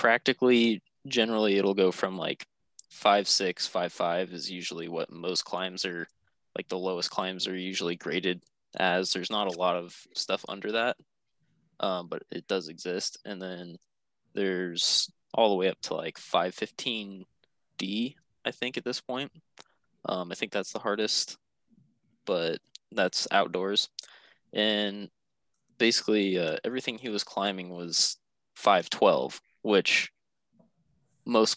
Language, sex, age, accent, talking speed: English, male, 20-39, American, 135 wpm